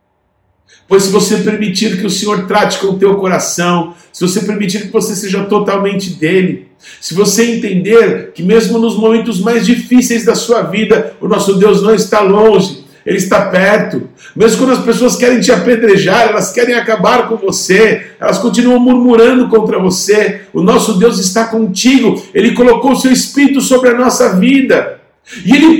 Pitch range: 210-270 Hz